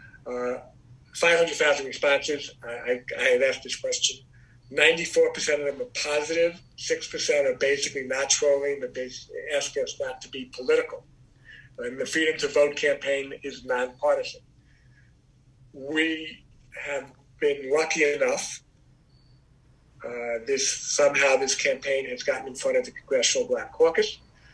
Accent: American